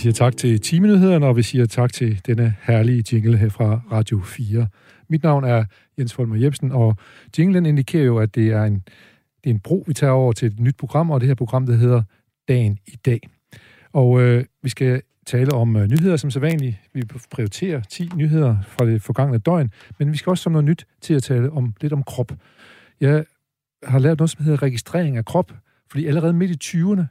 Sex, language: male, Danish